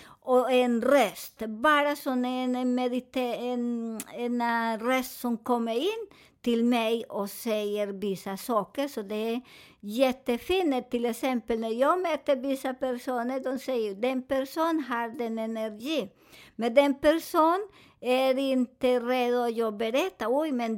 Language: Swedish